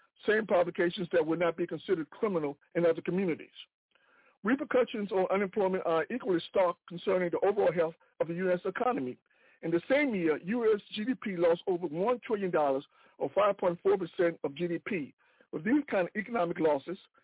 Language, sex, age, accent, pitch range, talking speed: English, male, 60-79, American, 170-225 Hz, 155 wpm